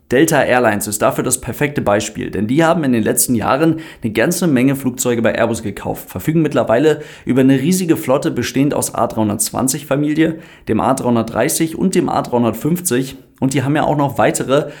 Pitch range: 115-150 Hz